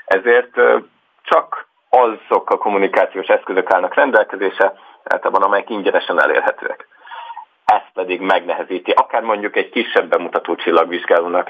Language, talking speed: Hungarian, 110 wpm